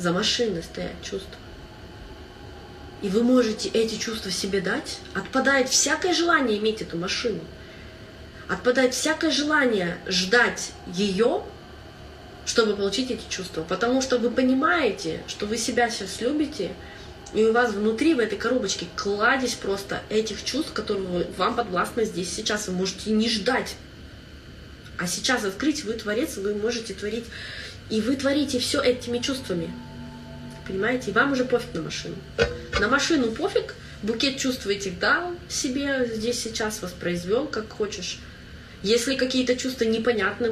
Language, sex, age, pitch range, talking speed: Russian, female, 20-39, 200-255 Hz, 135 wpm